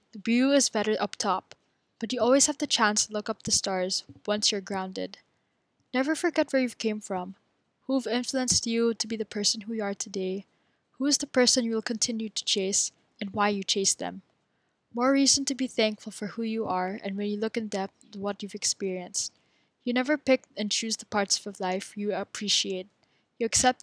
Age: 10-29